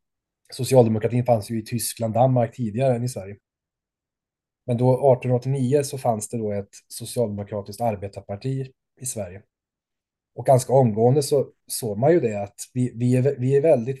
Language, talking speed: Swedish, 160 wpm